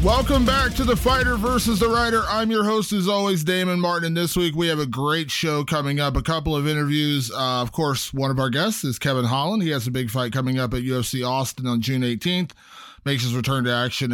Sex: male